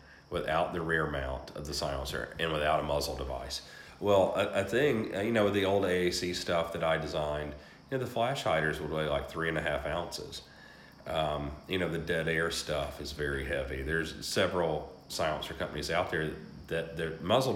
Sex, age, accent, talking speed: male, 40-59, American, 195 wpm